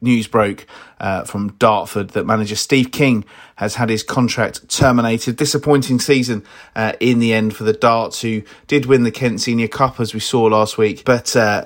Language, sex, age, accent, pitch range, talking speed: English, male, 30-49, British, 110-130 Hz, 190 wpm